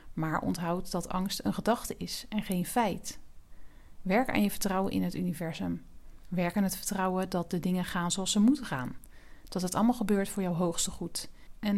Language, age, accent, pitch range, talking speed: Dutch, 40-59, Dutch, 175-215 Hz, 195 wpm